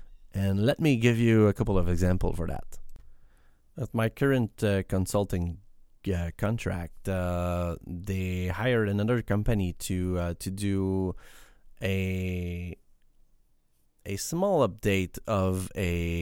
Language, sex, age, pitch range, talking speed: English, male, 30-49, 90-105 Hz, 120 wpm